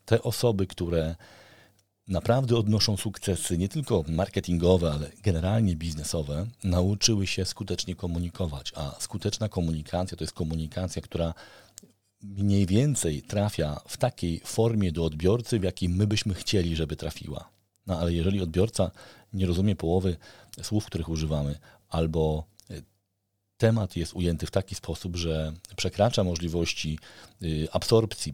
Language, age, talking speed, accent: Polish, 40-59, 125 wpm, native